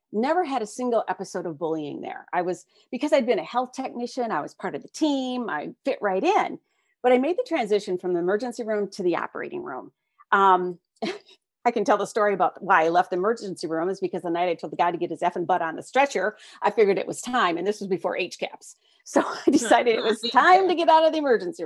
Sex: female